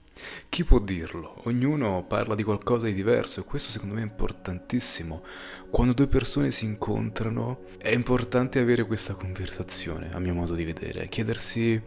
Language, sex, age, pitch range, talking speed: Italian, male, 30-49, 95-115 Hz, 155 wpm